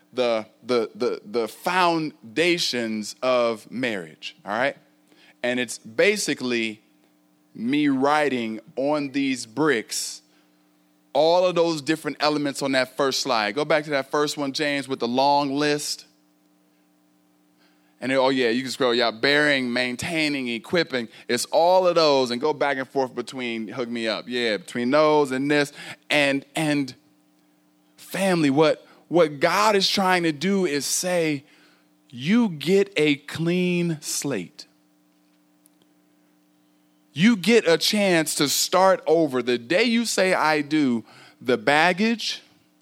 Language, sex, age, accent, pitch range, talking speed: English, male, 20-39, American, 105-165 Hz, 135 wpm